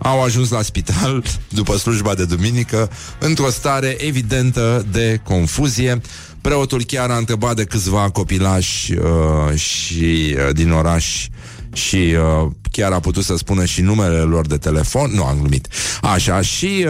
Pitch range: 90-120 Hz